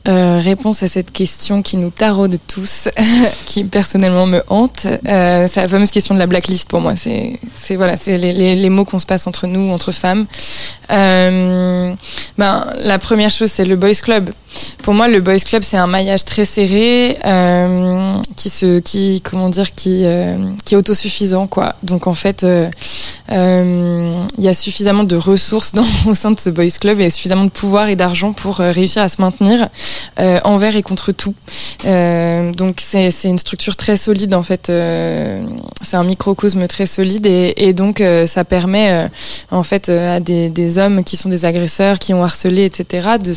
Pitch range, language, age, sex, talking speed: 180-205 Hz, French, 20-39, female, 200 wpm